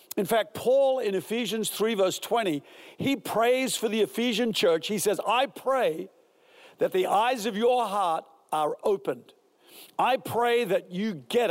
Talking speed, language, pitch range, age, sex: 160 wpm, English, 190-265 Hz, 60-79, male